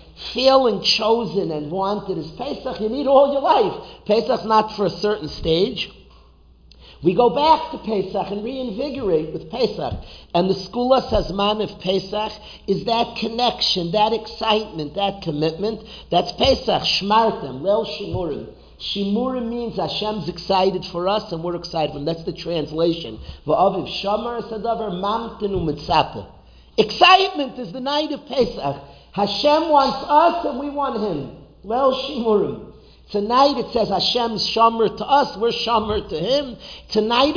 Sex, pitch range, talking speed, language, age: male, 185-245 Hz, 140 wpm, English, 50-69